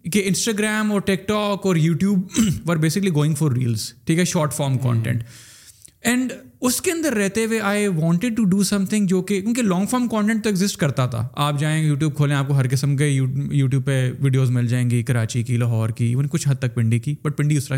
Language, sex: Urdu, male